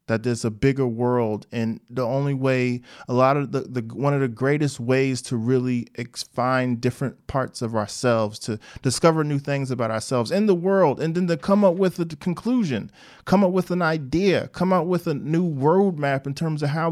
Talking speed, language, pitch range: 205 wpm, English, 130-170 Hz